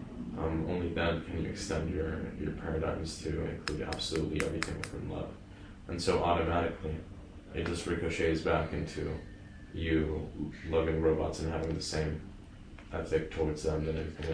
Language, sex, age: English, male, 20-39